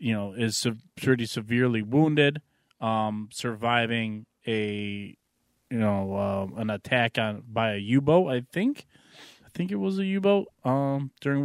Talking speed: 155 wpm